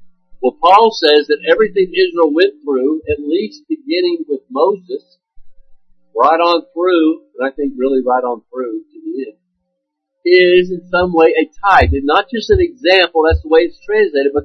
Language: English